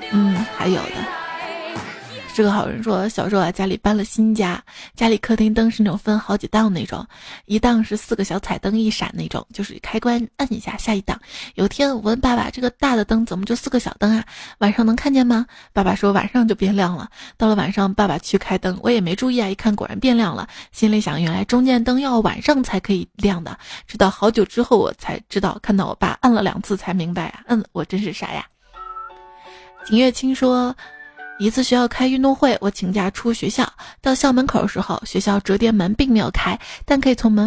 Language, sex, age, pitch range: Chinese, female, 20-39, 200-245 Hz